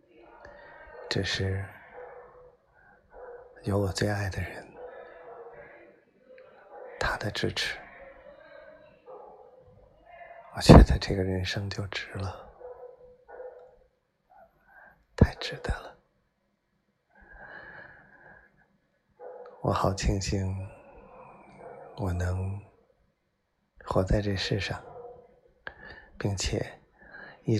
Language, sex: Chinese, male